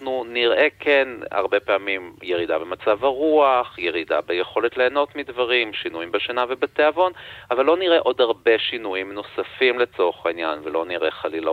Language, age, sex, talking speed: Hebrew, 40-59, male, 140 wpm